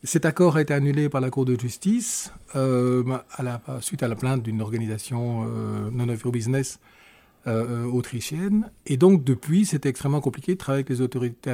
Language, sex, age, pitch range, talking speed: French, male, 40-59, 120-155 Hz, 175 wpm